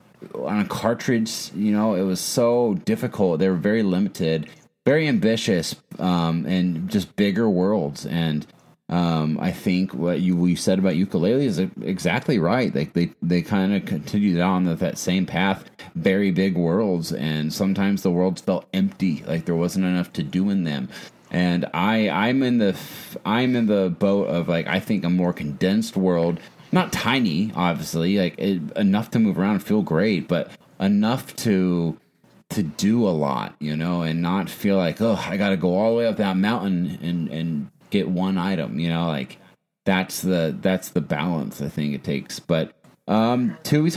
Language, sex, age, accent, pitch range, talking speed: English, male, 30-49, American, 85-105 Hz, 180 wpm